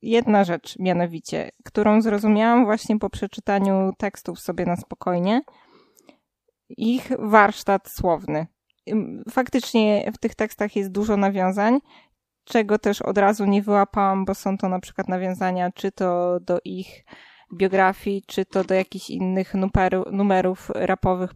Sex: female